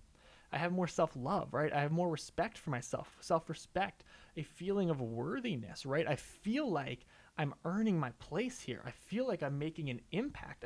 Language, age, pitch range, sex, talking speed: English, 20-39, 140-190 Hz, male, 180 wpm